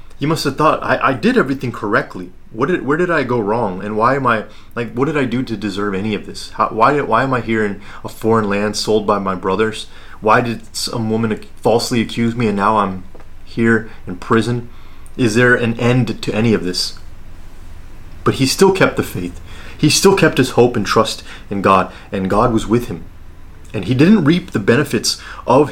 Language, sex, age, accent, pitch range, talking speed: English, male, 30-49, American, 95-120 Hz, 210 wpm